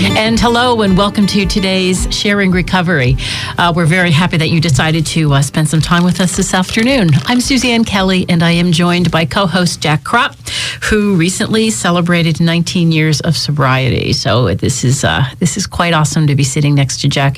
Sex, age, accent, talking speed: female, 40-59, American, 195 wpm